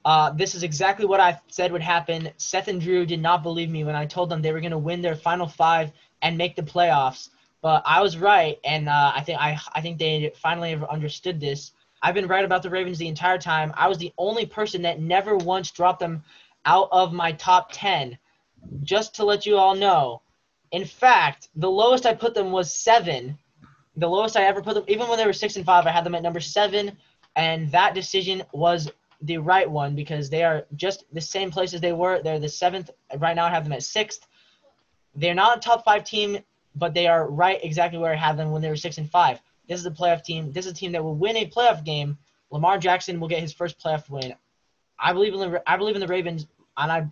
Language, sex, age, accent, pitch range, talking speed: English, male, 10-29, American, 155-190 Hz, 235 wpm